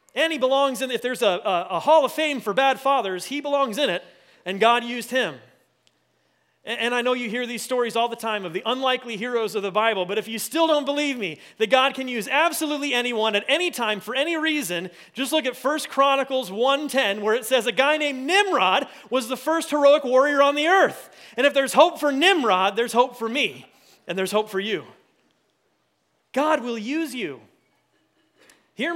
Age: 30-49